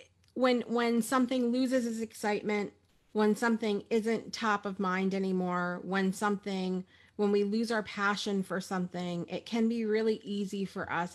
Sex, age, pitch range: female, 30-49, 185-235 Hz